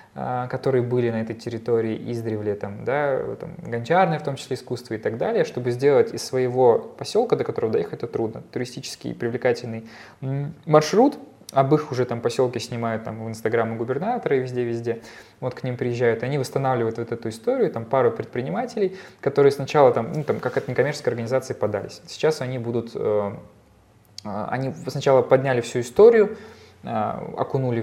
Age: 20-39